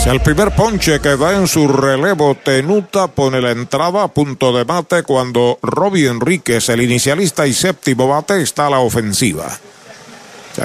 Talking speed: 165 wpm